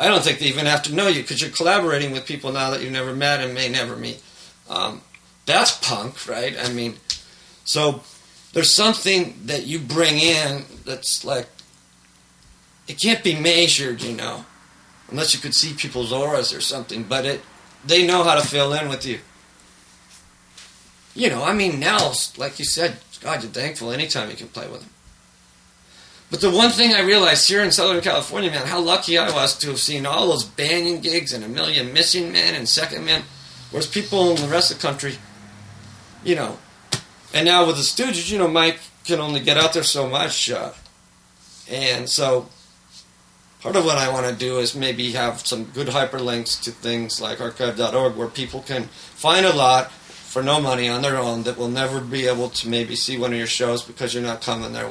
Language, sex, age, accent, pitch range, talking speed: English, male, 40-59, American, 120-165 Hz, 200 wpm